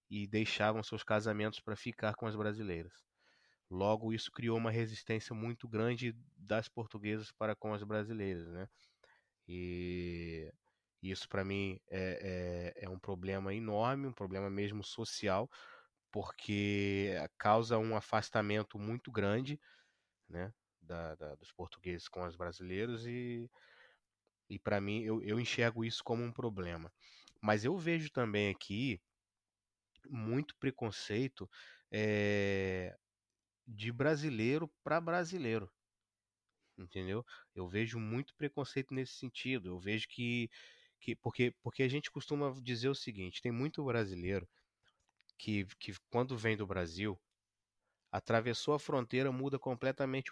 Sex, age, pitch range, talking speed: male, 20-39, 100-120 Hz, 130 wpm